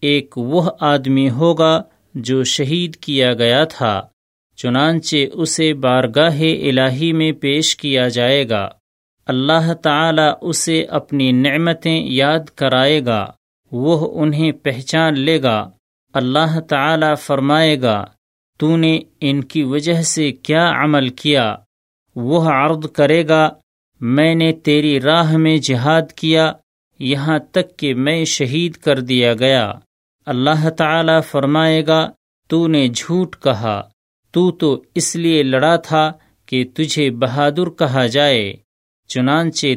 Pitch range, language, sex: 130-160 Hz, Urdu, male